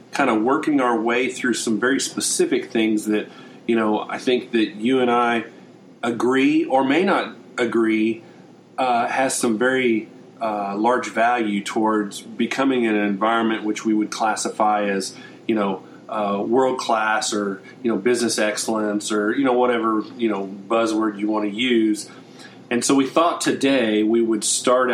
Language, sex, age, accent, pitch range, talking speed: English, male, 40-59, American, 110-130 Hz, 170 wpm